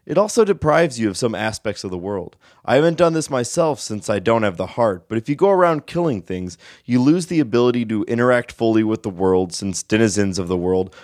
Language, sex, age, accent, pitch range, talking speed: English, male, 20-39, American, 95-120 Hz, 235 wpm